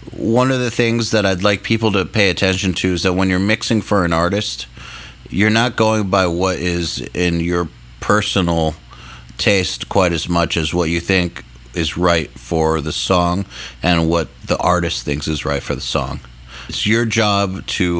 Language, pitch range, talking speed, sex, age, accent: English, 80-105 Hz, 185 wpm, male, 30-49, American